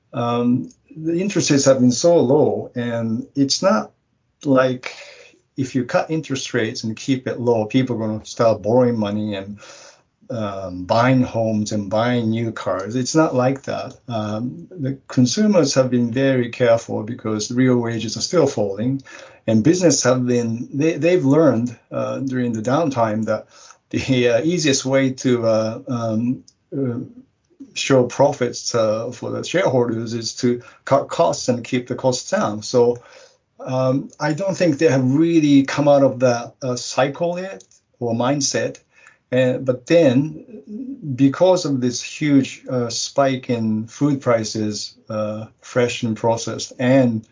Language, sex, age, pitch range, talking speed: English, male, 50-69, 115-135 Hz, 150 wpm